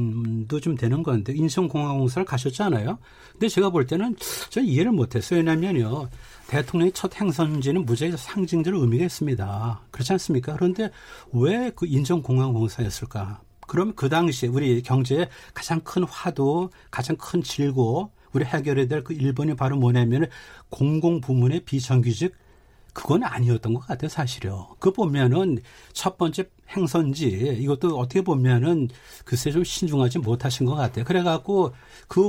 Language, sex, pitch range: Korean, male, 125-175 Hz